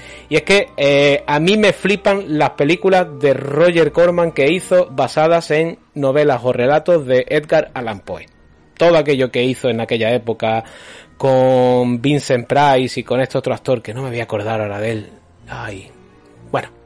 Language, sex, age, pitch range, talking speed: Spanish, male, 30-49, 125-160 Hz, 180 wpm